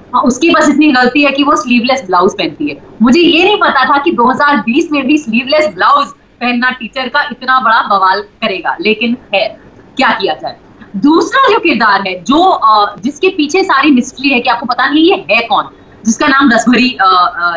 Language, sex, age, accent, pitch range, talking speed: Hindi, female, 30-49, native, 230-300 Hz, 165 wpm